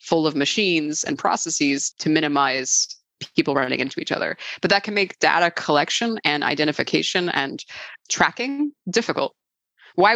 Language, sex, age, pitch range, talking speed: English, female, 20-39, 155-190 Hz, 140 wpm